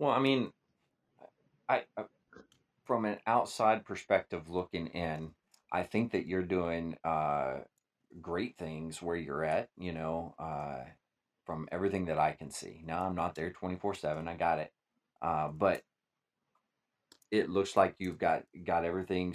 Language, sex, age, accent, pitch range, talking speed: English, male, 40-59, American, 80-95 Hz, 155 wpm